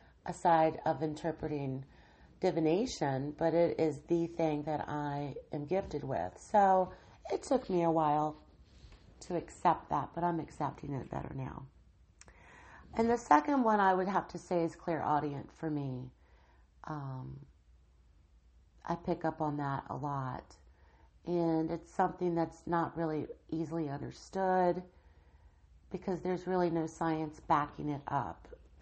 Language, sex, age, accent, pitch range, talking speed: English, female, 40-59, American, 140-170 Hz, 140 wpm